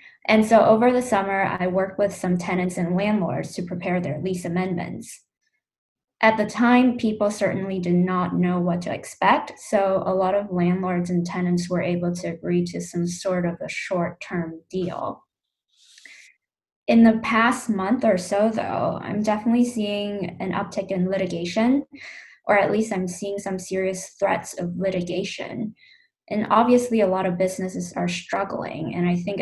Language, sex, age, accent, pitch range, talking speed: English, female, 10-29, American, 180-215 Hz, 165 wpm